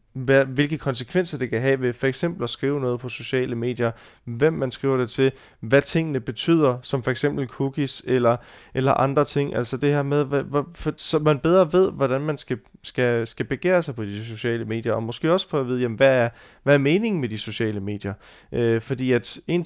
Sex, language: male, Danish